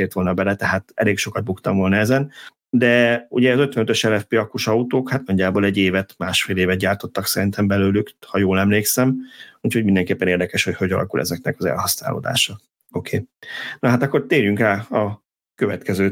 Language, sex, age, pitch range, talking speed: Hungarian, male, 30-49, 95-115 Hz, 165 wpm